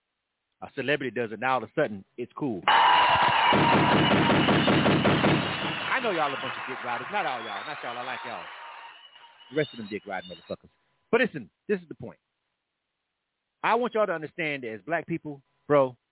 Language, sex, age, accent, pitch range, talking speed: English, male, 30-49, American, 145-225 Hz, 185 wpm